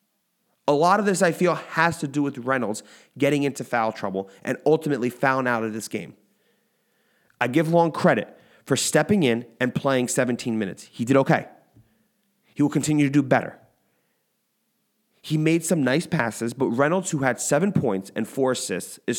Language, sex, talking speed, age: English, male, 180 wpm, 30-49